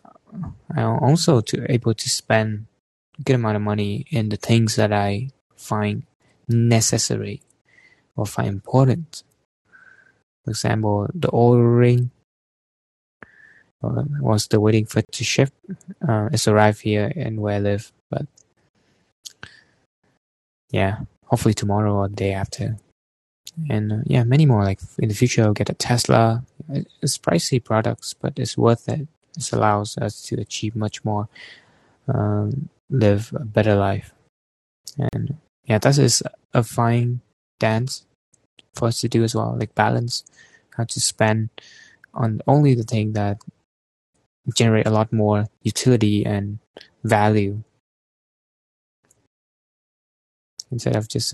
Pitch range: 105-125 Hz